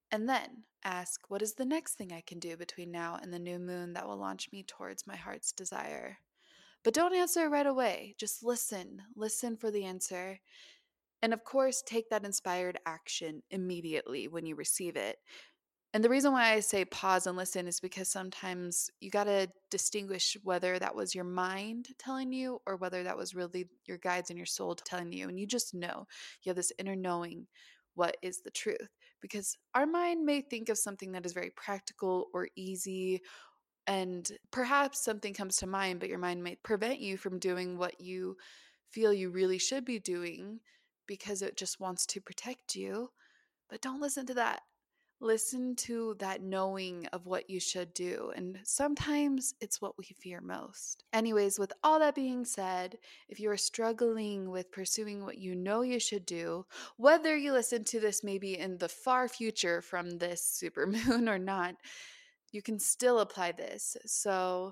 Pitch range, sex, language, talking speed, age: 185-235 Hz, female, English, 185 wpm, 20-39